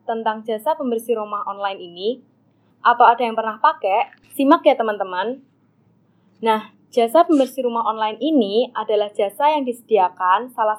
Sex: female